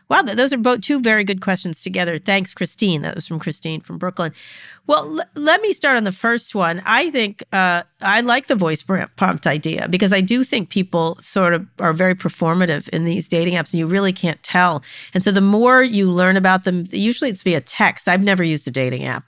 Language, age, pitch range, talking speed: English, 40-59, 160-200 Hz, 225 wpm